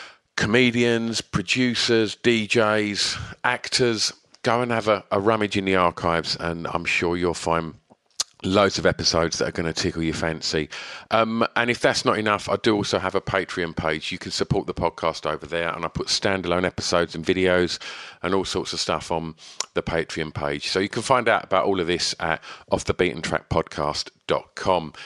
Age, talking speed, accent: 50-69, 180 wpm, British